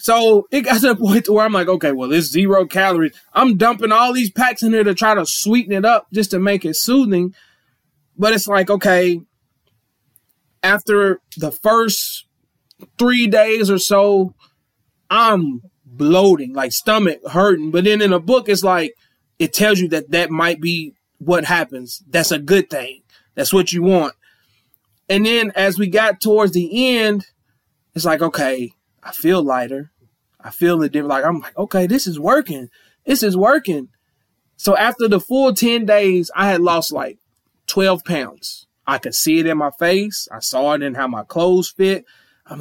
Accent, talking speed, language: American, 180 wpm, English